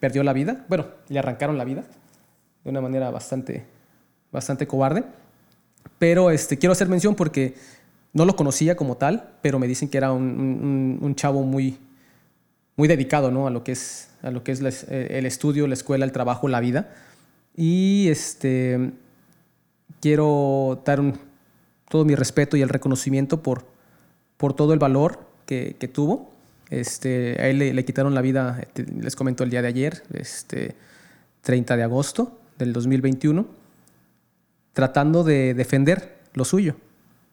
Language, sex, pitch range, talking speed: Spanish, male, 130-160 Hz, 145 wpm